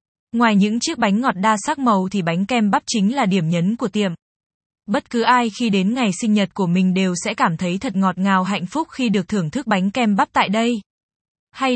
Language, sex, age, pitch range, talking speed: Vietnamese, female, 20-39, 195-230 Hz, 240 wpm